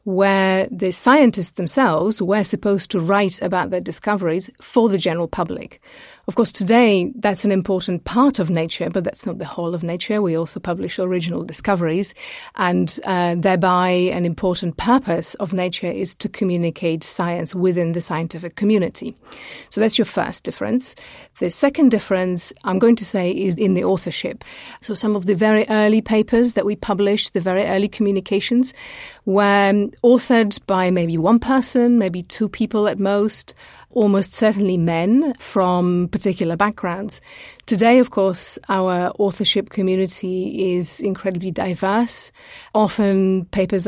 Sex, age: female, 30-49